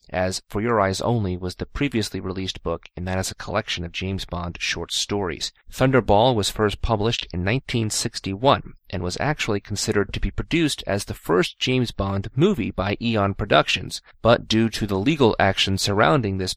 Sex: male